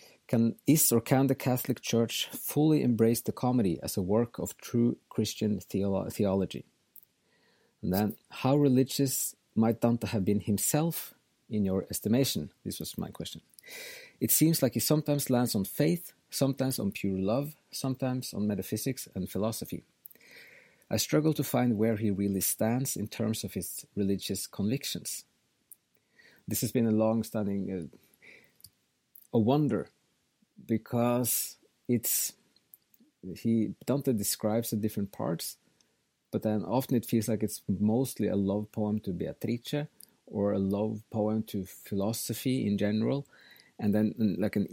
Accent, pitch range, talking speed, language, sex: Norwegian, 105-125 Hz, 145 wpm, English, male